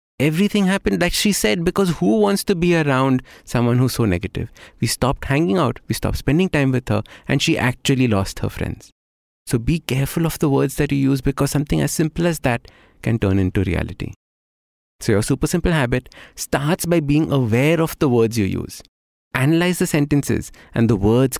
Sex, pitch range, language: male, 100-150 Hz, English